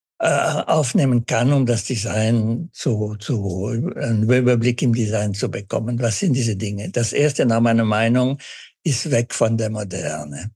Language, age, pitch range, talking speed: German, 60-79, 115-150 Hz, 155 wpm